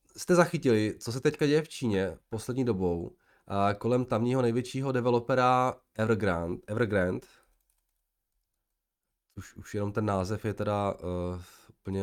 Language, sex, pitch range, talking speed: Czech, male, 100-130 Hz, 130 wpm